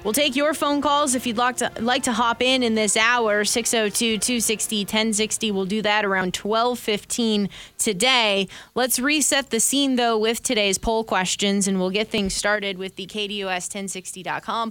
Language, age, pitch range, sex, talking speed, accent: English, 20-39, 200-245 Hz, female, 165 wpm, American